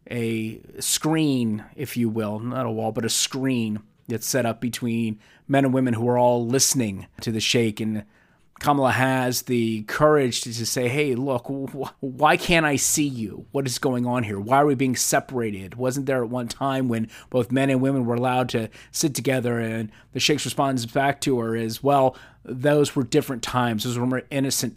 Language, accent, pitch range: English, American, 110-135 Hz